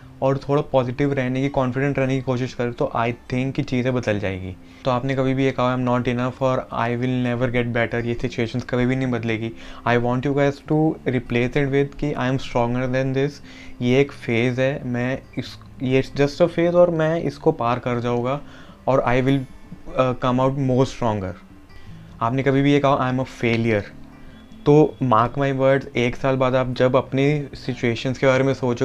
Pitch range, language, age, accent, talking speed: 115-135 Hz, Hindi, 20-39, native, 210 wpm